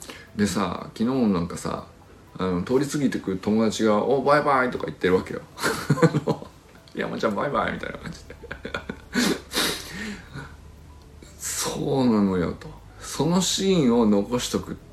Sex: male